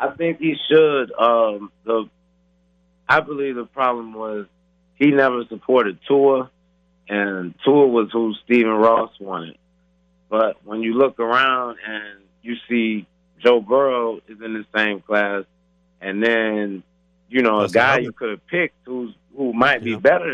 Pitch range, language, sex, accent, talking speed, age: 95-125 Hz, English, male, American, 155 wpm, 30-49